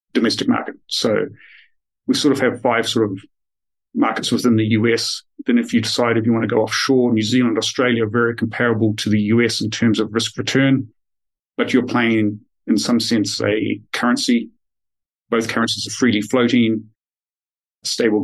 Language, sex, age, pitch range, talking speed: English, male, 40-59, 110-135 Hz, 170 wpm